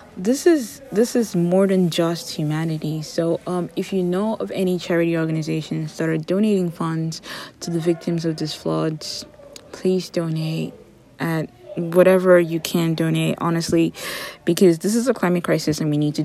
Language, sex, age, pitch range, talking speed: English, female, 20-39, 155-185 Hz, 165 wpm